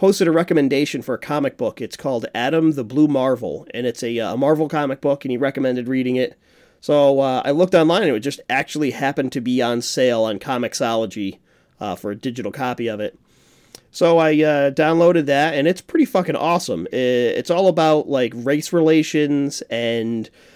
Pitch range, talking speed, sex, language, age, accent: 125-155 Hz, 190 wpm, male, English, 30-49, American